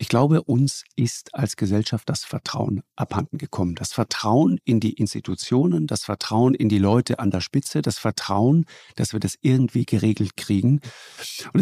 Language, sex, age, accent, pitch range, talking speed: German, male, 50-69, German, 105-125 Hz, 165 wpm